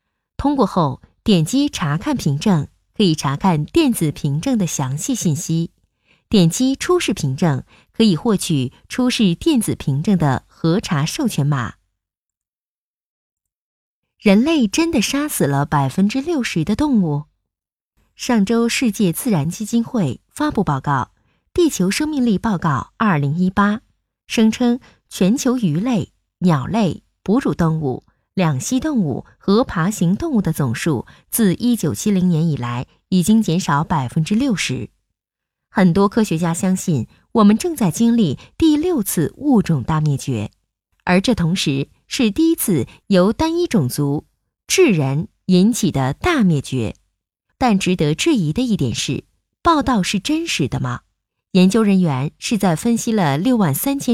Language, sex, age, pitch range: Chinese, female, 20-39, 150-230 Hz